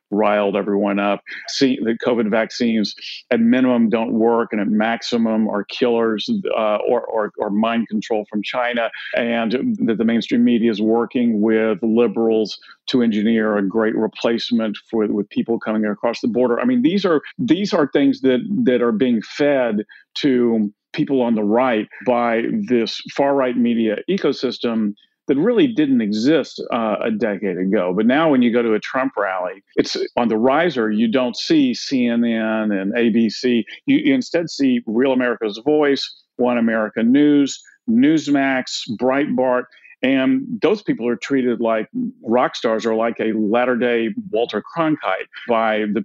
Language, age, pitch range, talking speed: English, 50-69, 110-145 Hz, 160 wpm